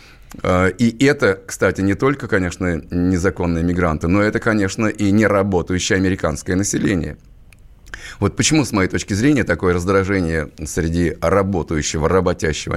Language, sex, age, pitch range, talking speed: Russian, male, 30-49, 85-100 Hz, 120 wpm